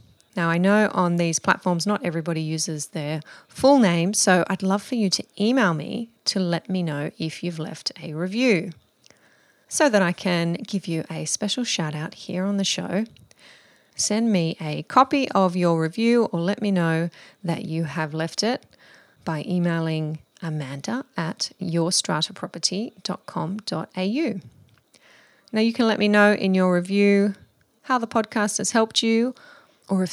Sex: female